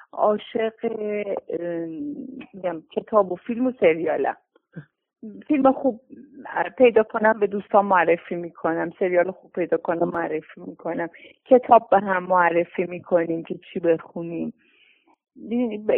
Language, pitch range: Persian, 180-245 Hz